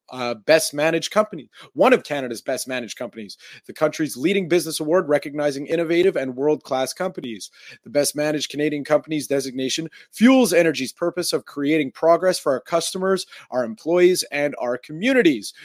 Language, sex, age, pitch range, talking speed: English, male, 30-49, 135-185 Hz, 155 wpm